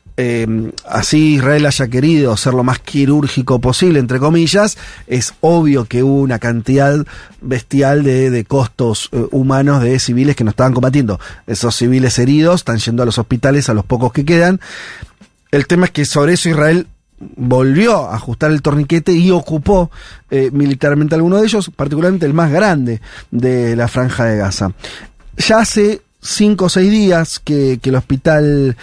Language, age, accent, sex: Spanish, 40-59, Argentinian, male